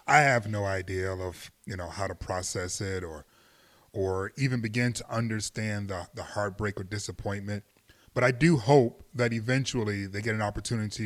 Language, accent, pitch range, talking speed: English, American, 105-150 Hz, 175 wpm